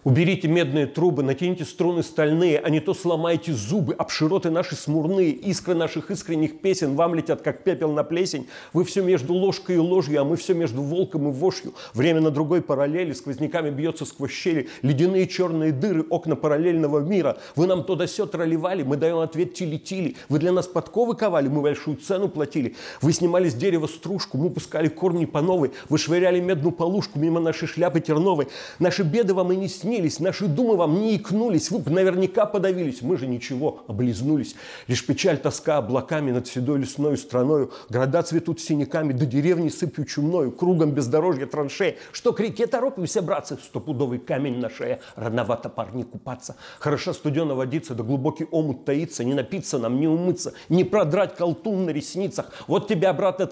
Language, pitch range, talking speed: Russian, 150-185 Hz, 175 wpm